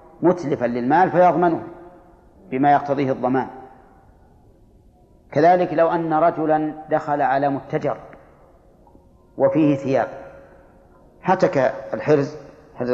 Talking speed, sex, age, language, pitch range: 85 wpm, male, 40-59, Arabic, 130-160 Hz